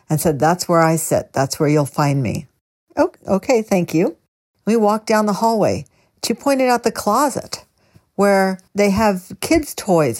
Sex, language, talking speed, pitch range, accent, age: female, English, 175 wpm, 155-210 Hz, American, 60-79